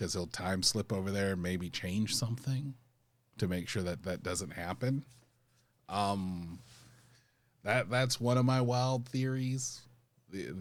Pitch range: 100-125 Hz